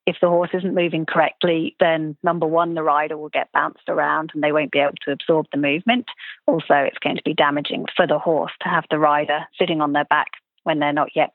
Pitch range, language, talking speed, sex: 155-185 Hz, English, 240 wpm, female